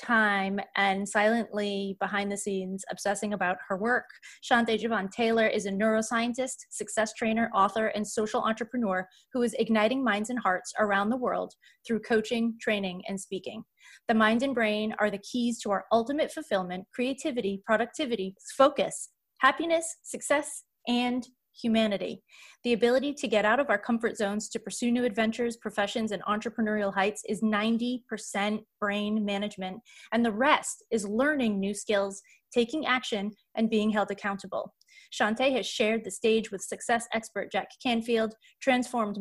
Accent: American